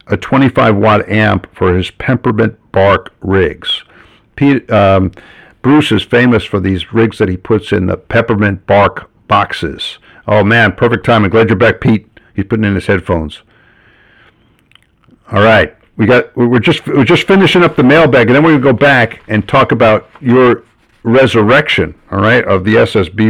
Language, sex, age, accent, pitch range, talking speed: English, male, 50-69, American, 100-120 Hz, 170 wpm